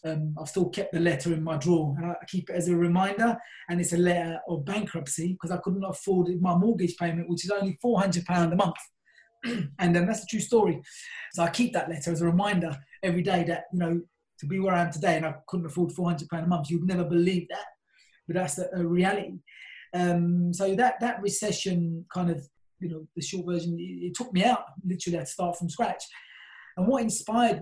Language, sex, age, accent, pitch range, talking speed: English, male, 20-39, British, 175-200 Hz, 220 wpm